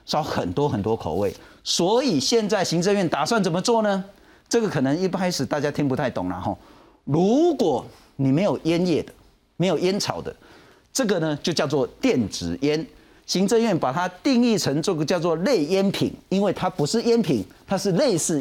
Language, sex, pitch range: Chinese, male, 145-220 Hz